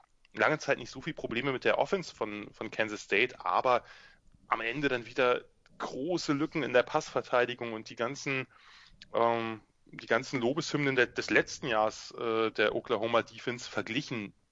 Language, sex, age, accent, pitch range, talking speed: English, male, 20-39, German, 110-130 Hz, 155 wpm